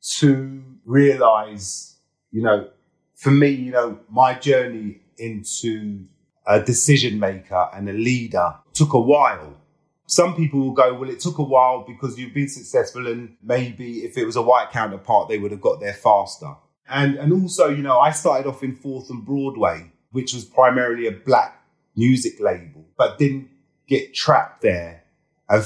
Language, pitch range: English, 105-140 Hz